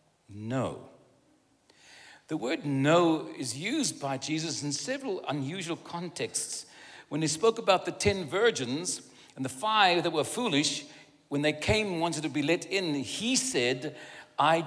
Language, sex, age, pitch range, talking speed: English, male, 60-79, 135-175 Hz, 150 wpm